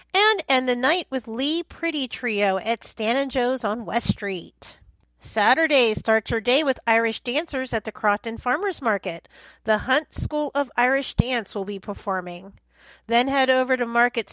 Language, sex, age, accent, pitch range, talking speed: English, female, 40-59, American, 220-285 Hz, 170 wpm